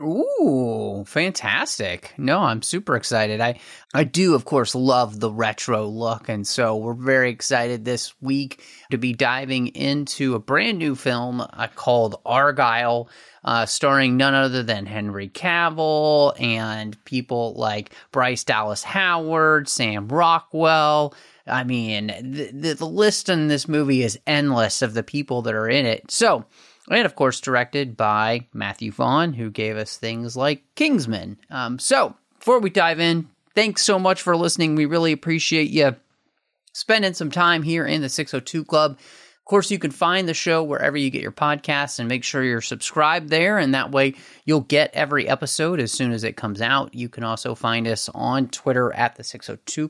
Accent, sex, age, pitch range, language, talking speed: American, male, 30-49, 120-155 Hz, English, 175 wpm